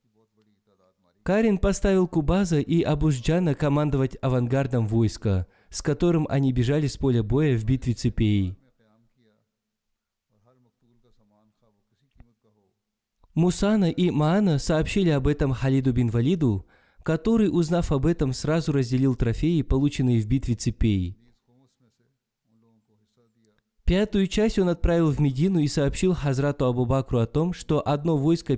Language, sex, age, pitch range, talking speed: Russian, male, 20-39, 110-155 Hz, 110 wpm